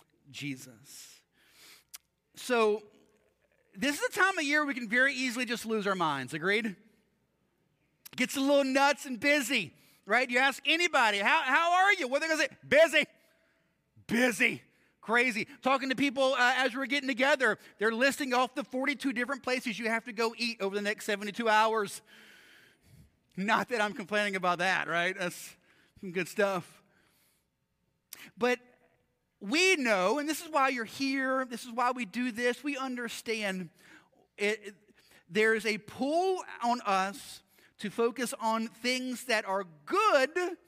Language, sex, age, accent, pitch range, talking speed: English, male, 30-49, American, 205-275 Hz, 160 wpm